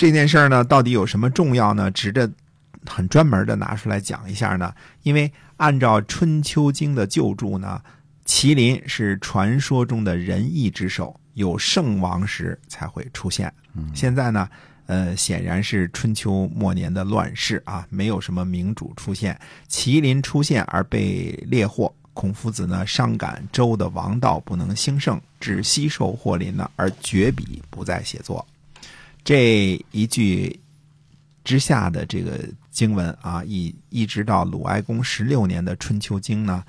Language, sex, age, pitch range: Chinese, male, 50-69, 95-135 Hz